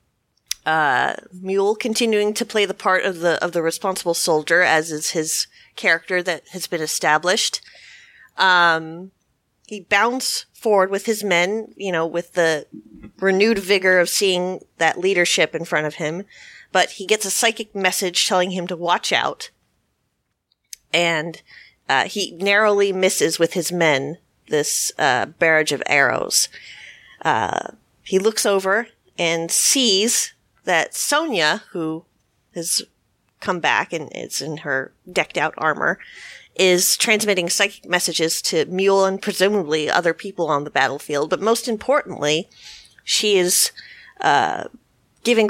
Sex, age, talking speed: female, 30-49, 140 wpm